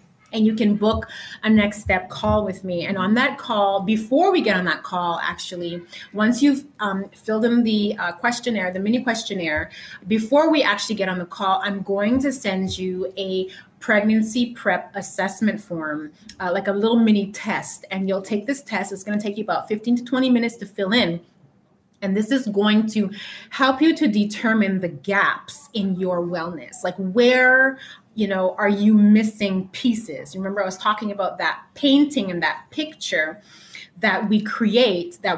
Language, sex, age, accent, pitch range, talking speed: English, female, 30-49, American, 190-235 Hz, 185 wpm